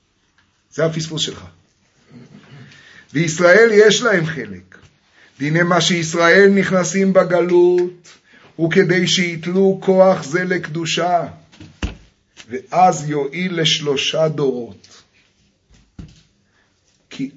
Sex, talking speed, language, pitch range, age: male, 80 wpm, Hebrew, 125-200 Hz, 30-49